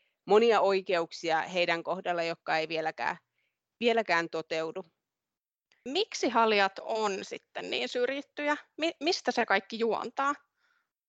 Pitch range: 175-225 Hz